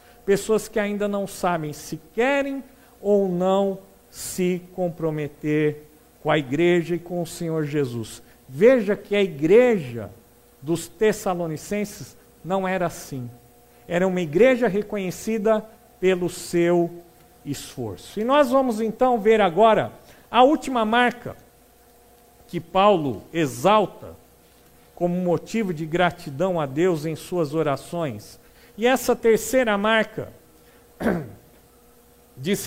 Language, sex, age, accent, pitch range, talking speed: Portuguese, male, 50-69, Brazilian, 165-215 Hz, 110 wpm